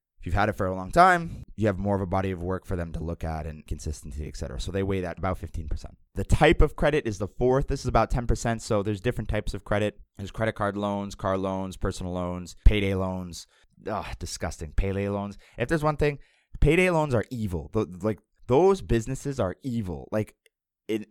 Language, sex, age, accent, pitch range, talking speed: English, male, 20-39, American, 90-110 Hz, 215 wpm